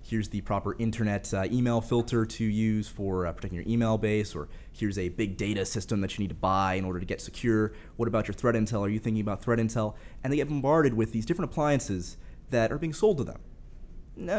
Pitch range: 95-130 Hz